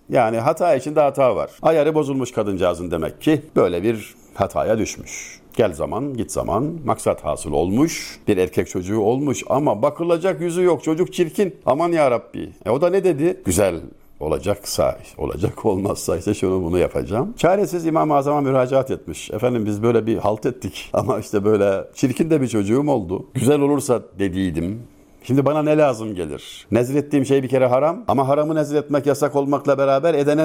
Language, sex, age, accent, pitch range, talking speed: Turkish, male, 50-69, native, 115-160 Hz, 170 wpm